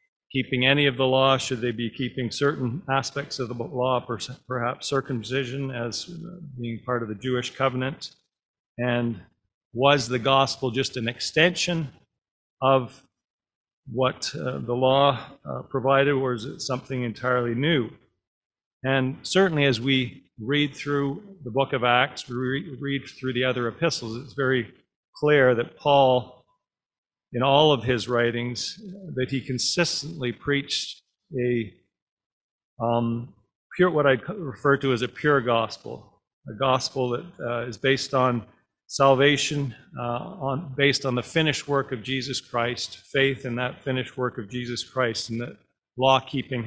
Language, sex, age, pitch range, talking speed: English, male, 50-69, 120-140 Hz, 145 wpm